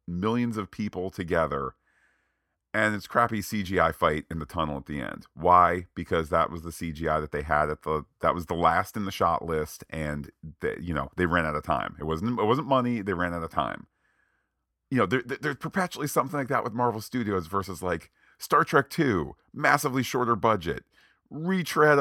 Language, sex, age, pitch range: English, male, 40-59, 85-125 Hz